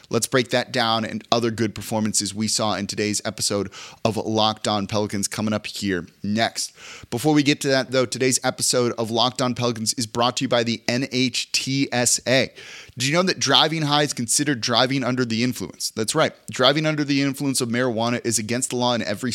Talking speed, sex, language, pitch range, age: 205 wpm, male, English, 110-140 Hz, 30-49